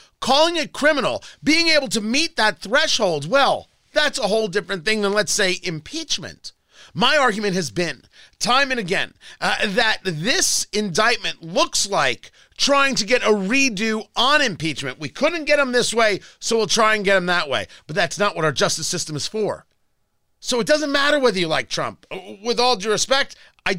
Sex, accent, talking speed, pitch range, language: male, American, 190 wpm, 190-250 Hz, English